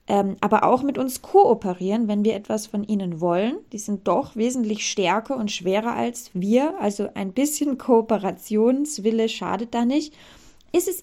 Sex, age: female, 20-39